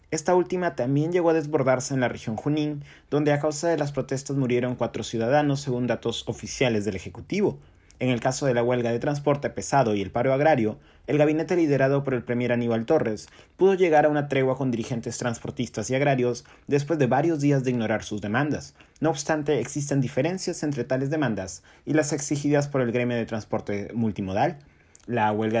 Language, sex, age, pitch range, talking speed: Spanish, male, 30-49, 115-145 Hz, 190 wpm